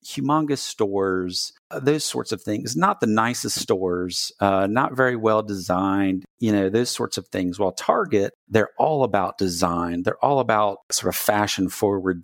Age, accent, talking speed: 50-69, American, 155 wpm